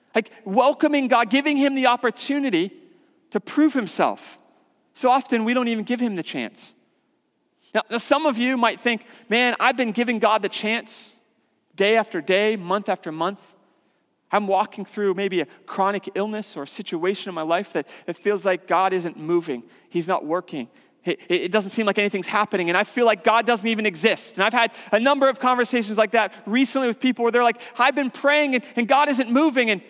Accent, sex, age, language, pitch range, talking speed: American, male, 40-59, English, 200-270 Hz, 195 wpm